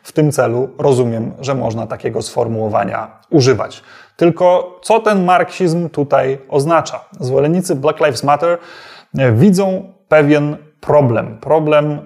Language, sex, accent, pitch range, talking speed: Polish, male, native, 130-160 Hz, 115 wpm